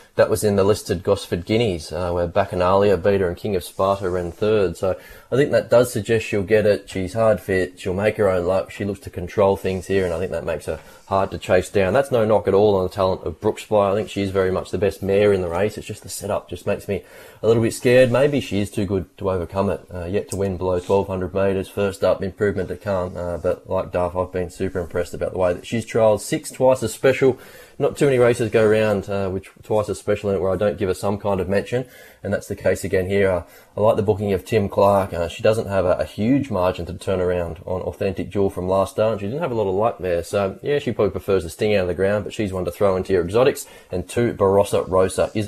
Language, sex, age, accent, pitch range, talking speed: English, male, 20-39, Australian, 90-105 Hz, 270 wpm